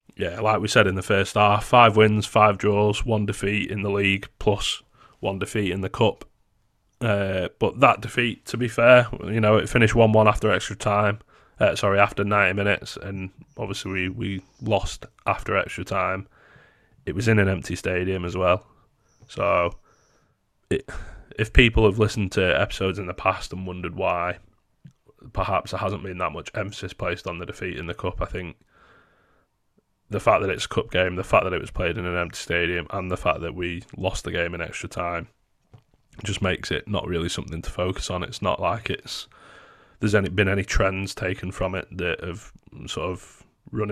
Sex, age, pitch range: male, 20-39, 95-110 Hz